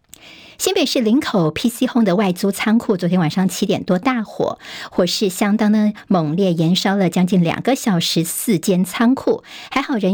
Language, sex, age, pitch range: Chinese, male, 50-69, 180-230 Hz